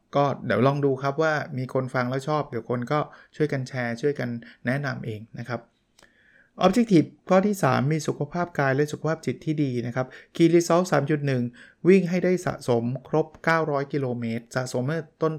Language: Thai